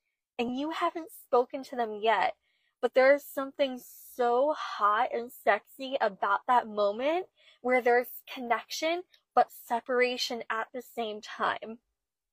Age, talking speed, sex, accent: 10-29, 125 wpm, female, American